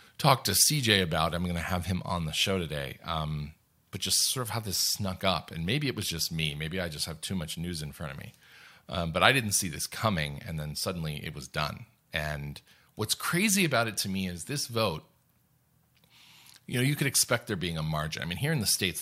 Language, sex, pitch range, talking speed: English, male, 85-120 Hz, 245 wpm